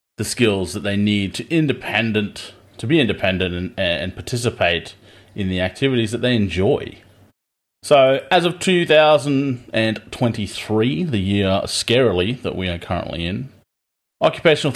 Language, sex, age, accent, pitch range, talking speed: English, male, 30-49, Australian, 95-120 Hz, 145 wpm